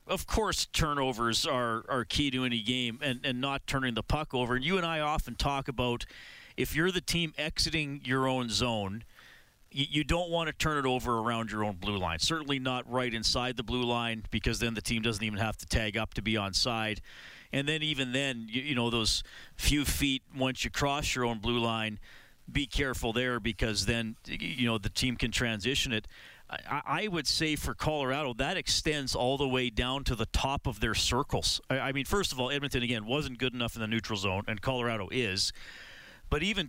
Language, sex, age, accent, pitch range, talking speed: English, male, 40-59, American, 115-140 Hz, 215 wpm